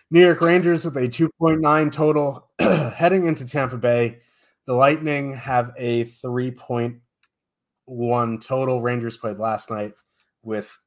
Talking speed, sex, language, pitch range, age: 120 wpm, male, English, 110-145 Hz, 30-49